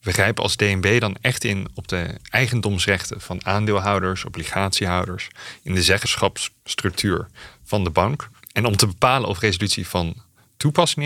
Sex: male